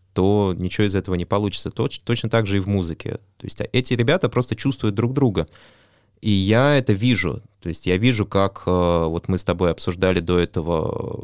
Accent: native